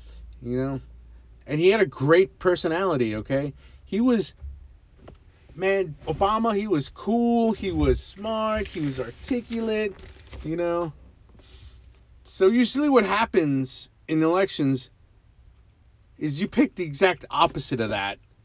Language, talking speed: English, 125 wpm